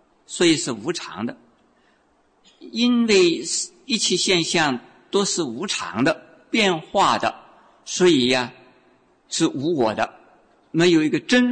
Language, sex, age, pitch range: Chinese, male, 50-69, 150-215 Hz